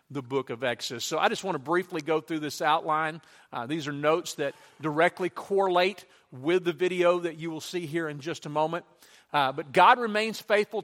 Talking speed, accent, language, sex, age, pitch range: 210 wpm, American, English, male, 40-59, 145-175 Hz